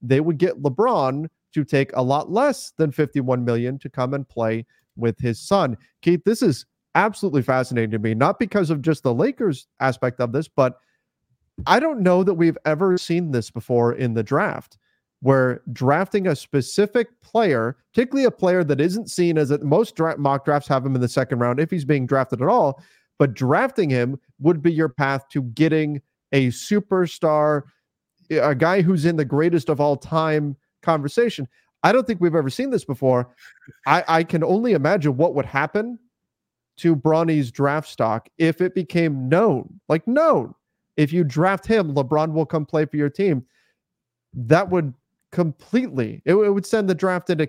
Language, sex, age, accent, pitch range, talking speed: English, male, 30-49, American, 135-185 Hz, 185 wpm